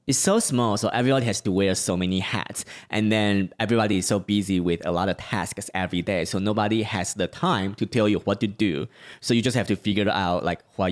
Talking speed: 240 wpm